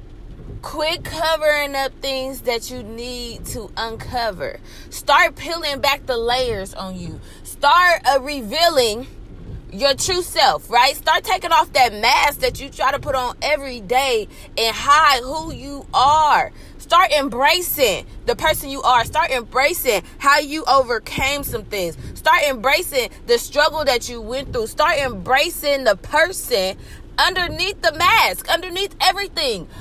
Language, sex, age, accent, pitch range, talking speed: English, female, 20-39, American, 265-340 Hz, 145 wpm